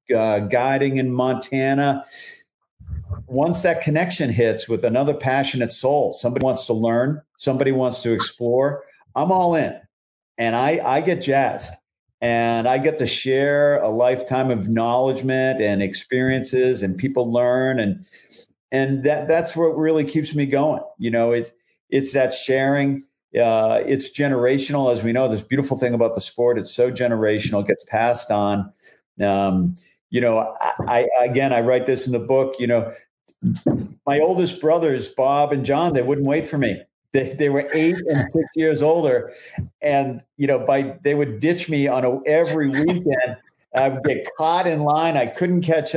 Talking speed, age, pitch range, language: 165 wpm, 50-69, 120-150 Hz, English